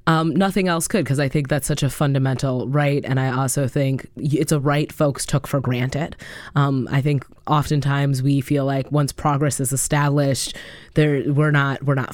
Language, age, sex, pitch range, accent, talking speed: English, 20-39, female, 140-175 Hz, American, 195 wpm